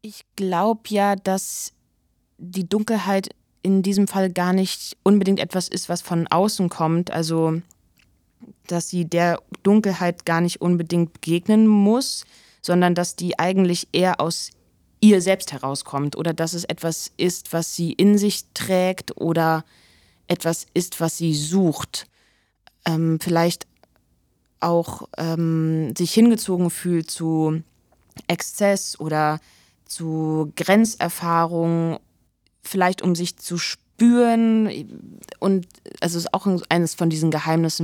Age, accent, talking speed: 20-39, German, 125 wpm